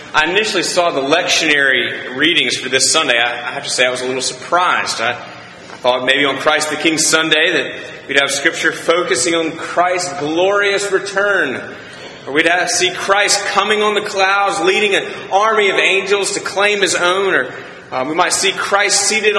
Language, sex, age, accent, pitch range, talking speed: English, male, 30-49, American, 150-195 Hz, 180 wpm